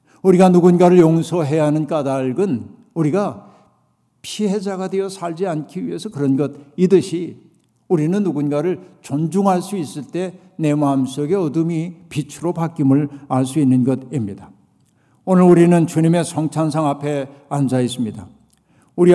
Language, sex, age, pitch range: Korean, male, 60-79, 145-180 Hz